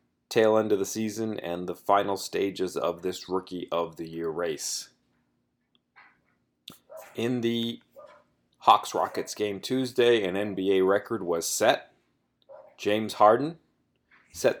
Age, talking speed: 30-49, 120 wpm